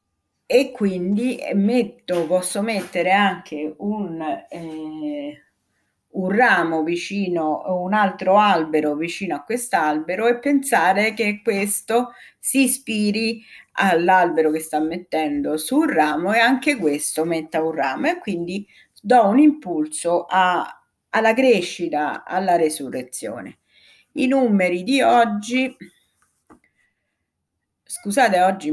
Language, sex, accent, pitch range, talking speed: Italian, female, native, 160-225 Hz, 100 wpm